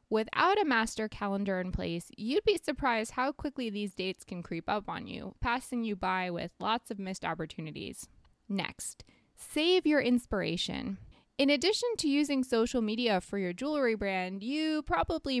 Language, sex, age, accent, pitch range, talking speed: English, female, 20-39, American, 195-260 Hz, 165 wpm